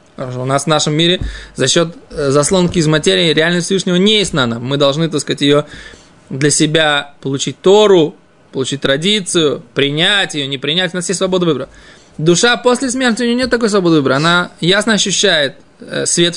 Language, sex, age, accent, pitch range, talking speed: Russian, male, 20-39, native, 155-215 Hz, 180 wpm